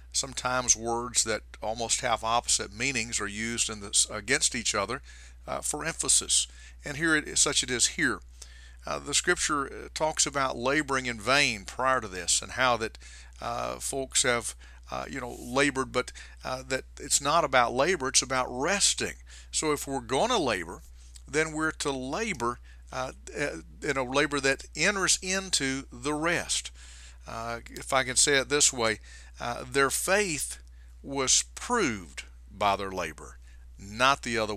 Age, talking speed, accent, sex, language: 50-69, 165 wpm, American, male, English